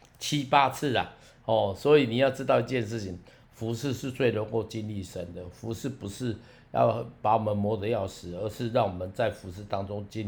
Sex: male